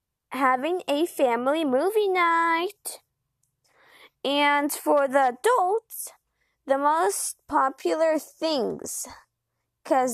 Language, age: English, 20-39